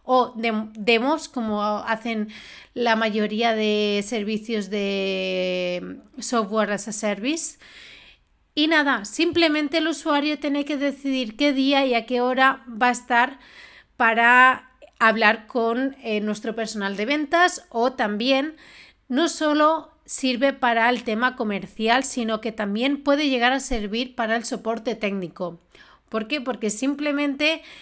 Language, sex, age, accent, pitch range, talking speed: Spanish, female, 30-49, Spanish, 225-275 Hz, 135 wpm